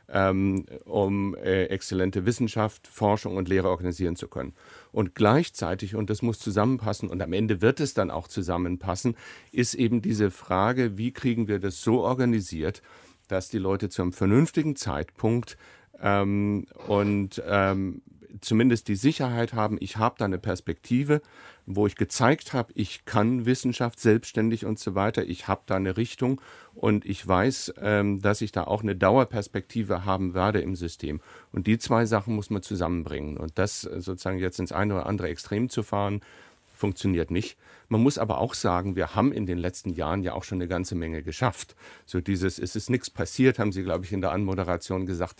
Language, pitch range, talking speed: German, 95-110 Hz, 175 wpm